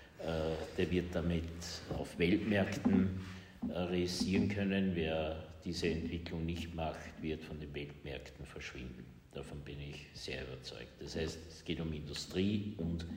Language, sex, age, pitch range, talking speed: German, male, 60-79, 85-100 Hz, 130 wpm